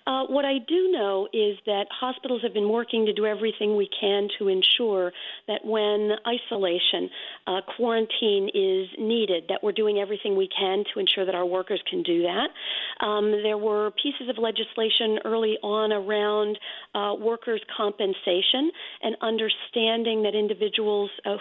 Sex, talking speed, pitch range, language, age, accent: female, 155 wpm, 190-235 Hz, English, 40-59, American